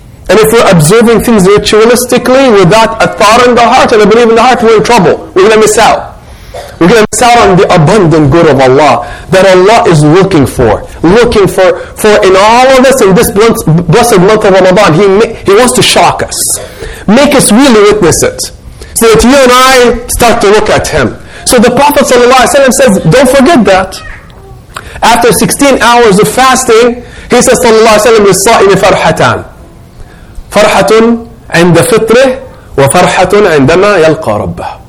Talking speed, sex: 170 wpm, male